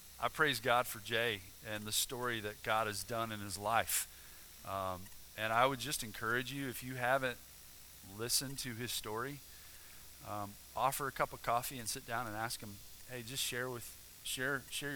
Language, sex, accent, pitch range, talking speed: English, male, American, 100-130 Hz, 190 wpm